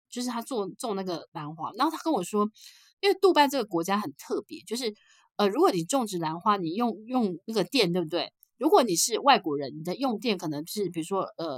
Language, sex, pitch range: Chinese, female, 175-260 Hz